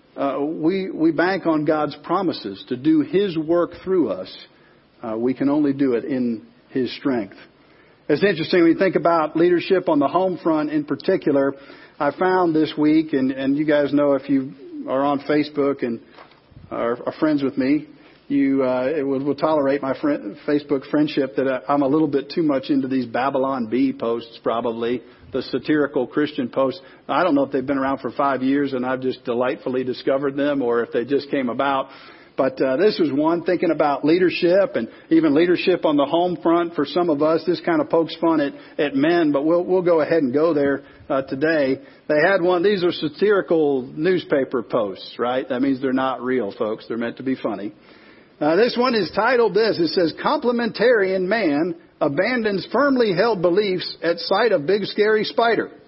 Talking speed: 195 wpm